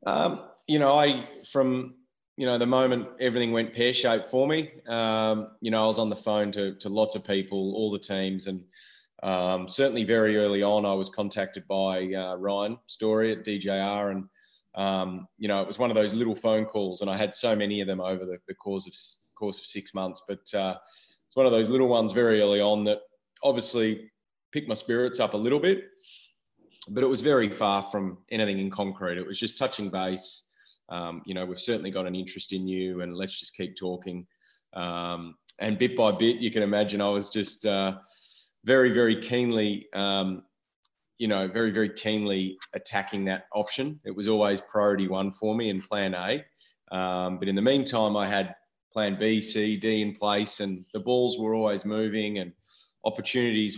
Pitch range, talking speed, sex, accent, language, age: 95-115 Hz, 195 wpm, male, Australian, English, 20-39